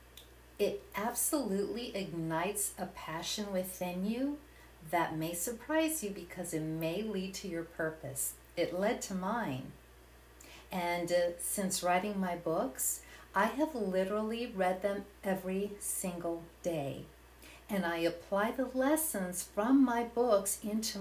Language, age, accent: English, 50-69, American